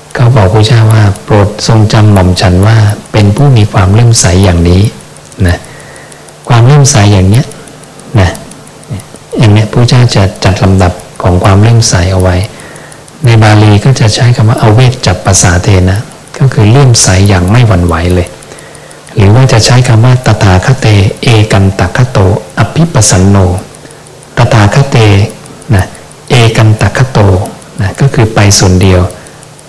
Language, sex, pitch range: English, male, 100-120 Hz